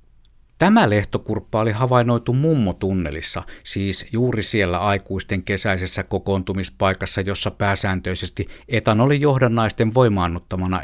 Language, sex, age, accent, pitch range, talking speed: Finnish, male, 50-69, native, 90-120 Hz, 85 wpm